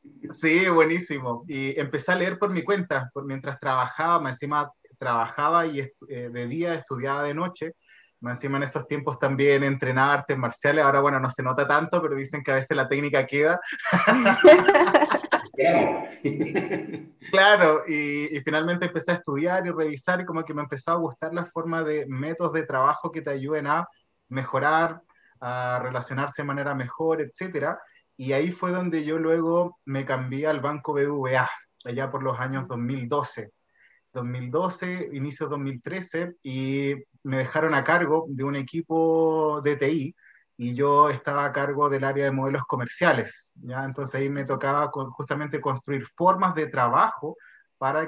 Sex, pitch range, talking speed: male, 135-160 Hz, 160 wpm